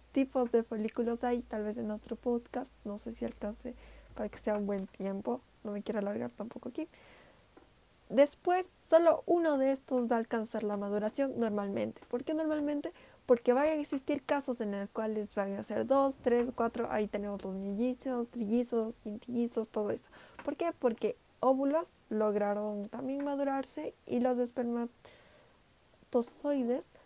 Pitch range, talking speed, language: 220-275 Hz, 155 wpm, Spanish